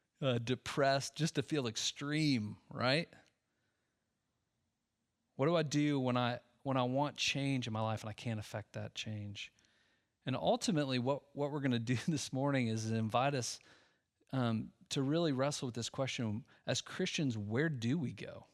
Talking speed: 165 wpm